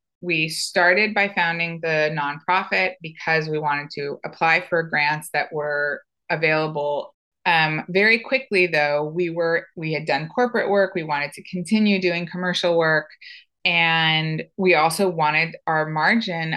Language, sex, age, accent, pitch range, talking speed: English, female, 20-39, American, 155-195 Hz, 145 wpm